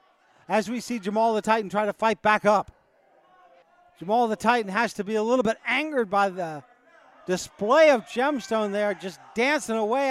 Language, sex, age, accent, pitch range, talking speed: English, male, 40-59, American, 230-305 Hz, 180 wpm